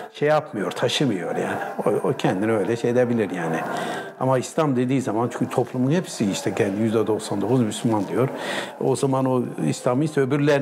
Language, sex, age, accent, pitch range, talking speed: Turkish, male, 60-79, native, 105-130 Hz, 165 wpm